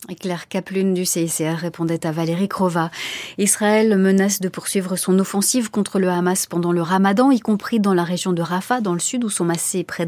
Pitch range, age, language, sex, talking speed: 185-235 Hz, 30-49, French, female, 200 wpm